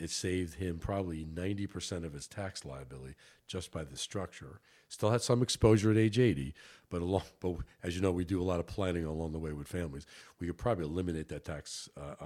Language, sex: English, male